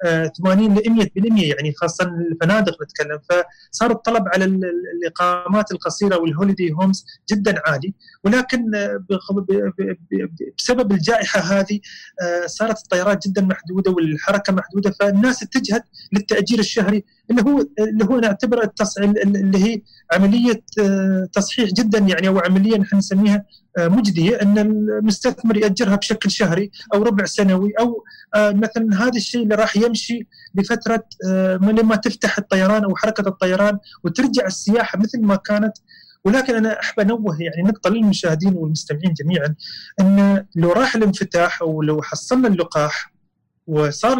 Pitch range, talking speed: 175-220 Hz, 125 wpm